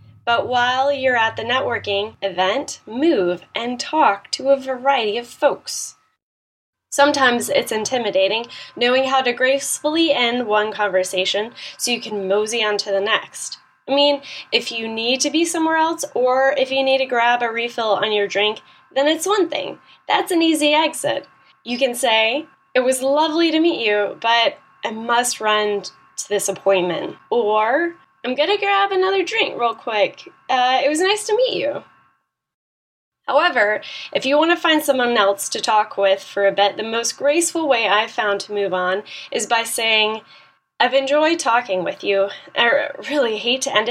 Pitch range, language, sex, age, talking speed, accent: 210-290 Hz, English, female, 10-29, 175 wpm, American